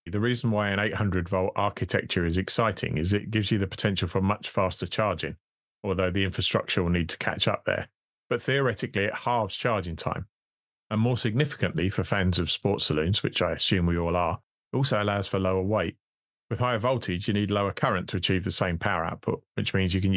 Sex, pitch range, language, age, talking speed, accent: male, 95-110 Hz, English, 30-49, 210 wpm, British